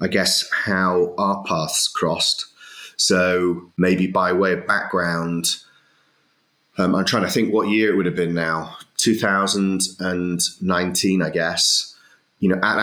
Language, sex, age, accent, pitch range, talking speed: English, male, 30-49, British, 85-100 Hz, 140 wpm